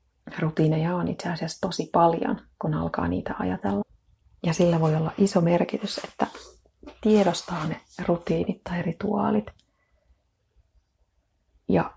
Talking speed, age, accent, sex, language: 115 wpm, 30-49, native, female, Finnish